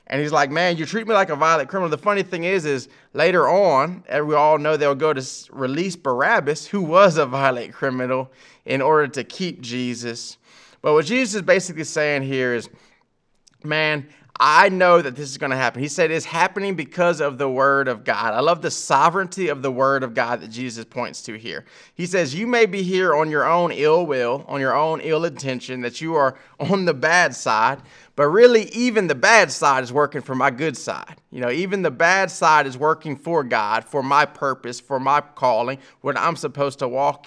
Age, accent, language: 30-49, American, English